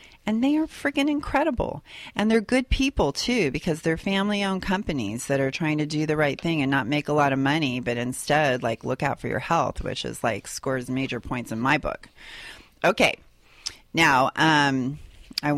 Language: English